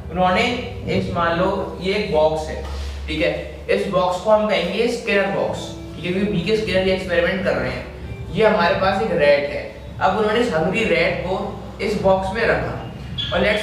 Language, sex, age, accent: Hindi, male, 20-39, native